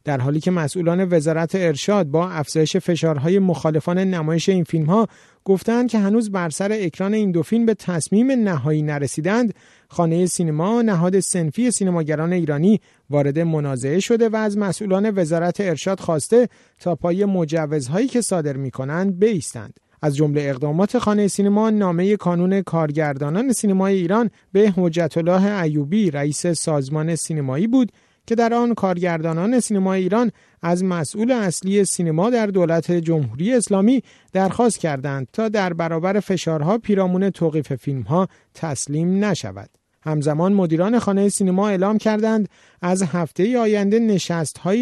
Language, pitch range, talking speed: Persian, 160-205 Hz, 135 wpm